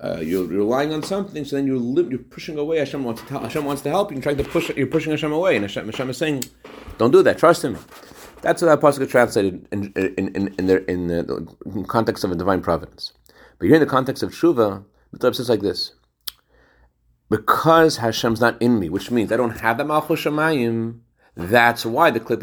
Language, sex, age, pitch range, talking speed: English, male, 30-49, 105-140 Hz, 220 wpm